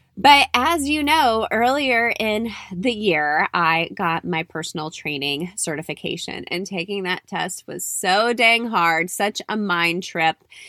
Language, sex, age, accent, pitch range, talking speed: English, female, 20-39, American, 165-195 Hz, 145 wpm